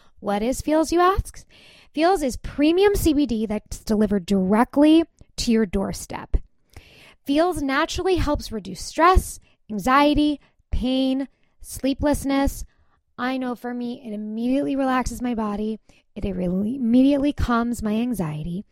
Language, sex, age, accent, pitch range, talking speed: English, female, 20-39, American, 225-290 Hz, 120 wpm